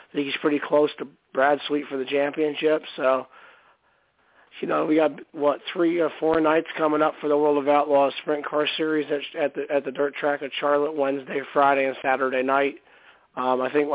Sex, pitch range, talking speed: male, 130-145 Hz, 205 wpm